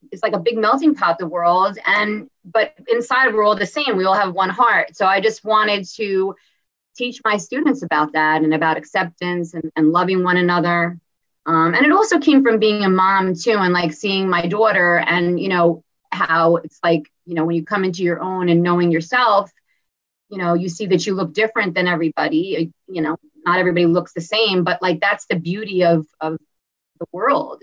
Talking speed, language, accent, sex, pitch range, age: 210 wpm, English, American, female, 170-210 Hz, 30-49